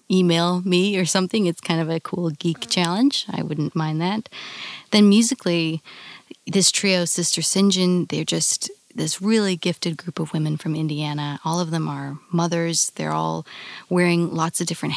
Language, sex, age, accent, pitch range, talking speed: English, female, 20-39, American, 155-185 Hz, 170 wpm